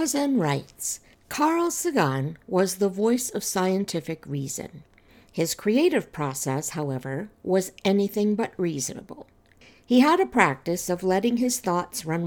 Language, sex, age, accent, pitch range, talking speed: English, female, 60-79, American, 155-225 Hz, 125 wpm